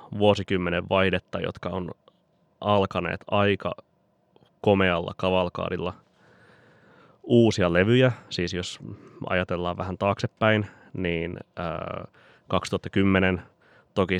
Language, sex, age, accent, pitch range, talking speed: Finnish, male, 20-39, native, 90-105 Hz, 80 wpm